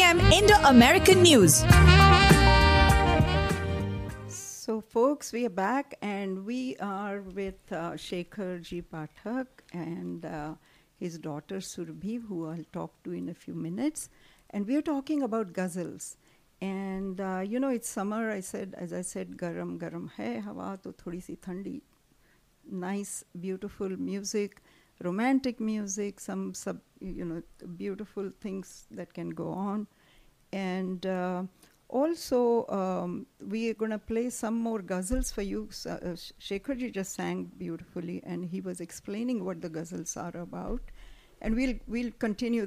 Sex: female